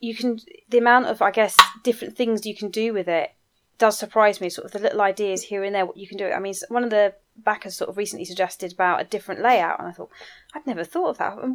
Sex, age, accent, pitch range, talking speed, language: female, 20-39, British, 185-225 Hz, 270 wpm, English